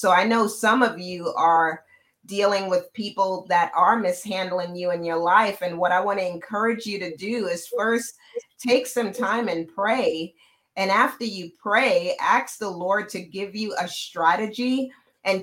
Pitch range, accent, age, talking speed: 185-245 Hz, American, 40-59, 180 wpm